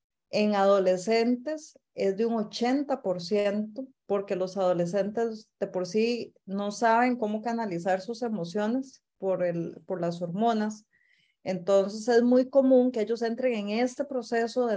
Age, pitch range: 30-49, 195-245 Hz